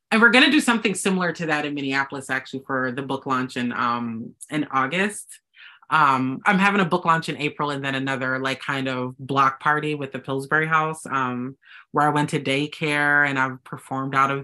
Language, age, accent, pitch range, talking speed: English, 30-49, American, 130-165 Hz, 210 wpm